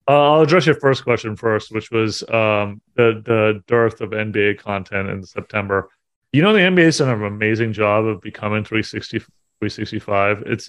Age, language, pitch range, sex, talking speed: 30-49, English, 100-115 Hz, male, 170 wpm